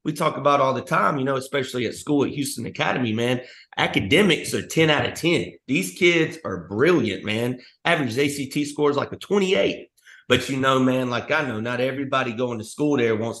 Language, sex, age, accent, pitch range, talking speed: English, male, 30-49, American, 115-140 Hz, 205 wpm